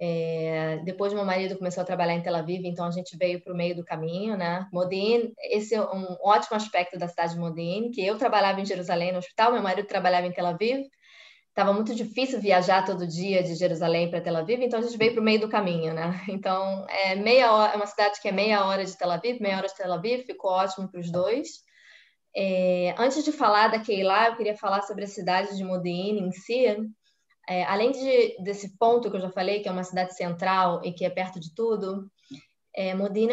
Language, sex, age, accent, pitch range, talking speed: Portuguese, female, 20-39, Brazilian, 180-220 Hz, 225 wpm